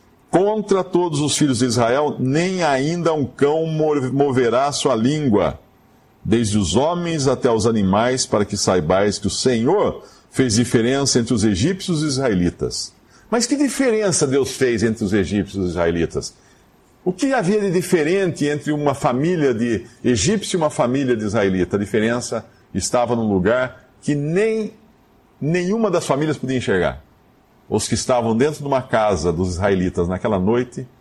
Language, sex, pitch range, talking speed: Portuguese, male, 105-150 Hz, 160 wpm